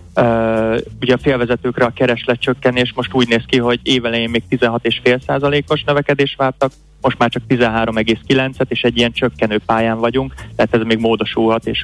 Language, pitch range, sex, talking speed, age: Hungarian, 110-125 Hz, male, 160 wpm, 20-39